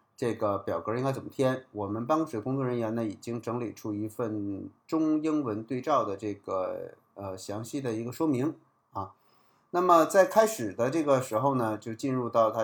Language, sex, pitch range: Chinese, male, 110-140 Hz